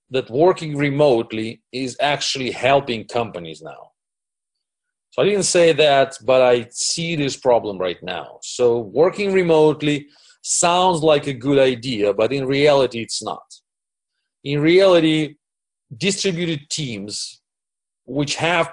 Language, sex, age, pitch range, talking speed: English, male, 40-59, 125-160 Hz, 125 wpm